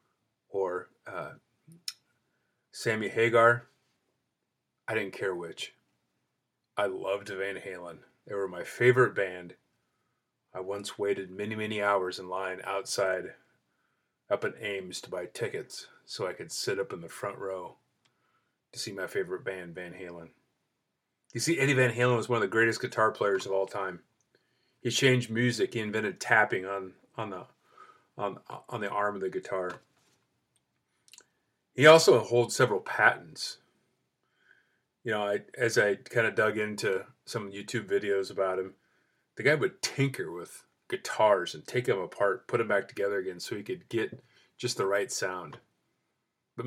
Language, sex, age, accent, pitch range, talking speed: English, male, 30-49, American, 100-140 Hz, 155 wpm